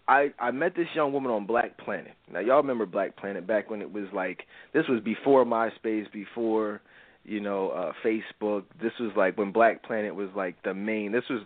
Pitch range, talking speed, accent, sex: 105-155 Hz, 210 wpm, American, male